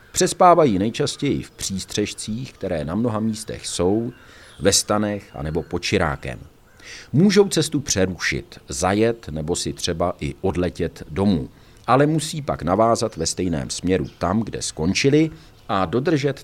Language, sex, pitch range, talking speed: Czech, male, 90-130 Hz, 130 wpm